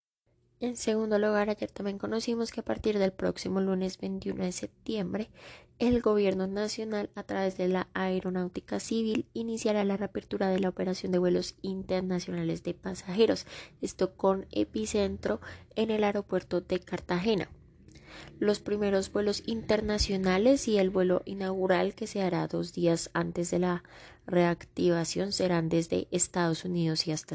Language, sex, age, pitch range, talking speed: Spanish, female, 20-39, 170-205 Hz, 145 wpm